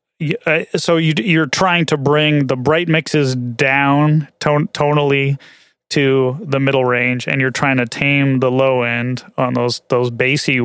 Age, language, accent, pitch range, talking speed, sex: 30-49, English, American, 125-145 Hz, 150 wpm, male